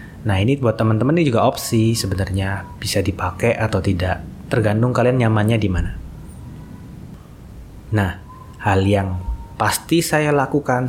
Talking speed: 125 wpm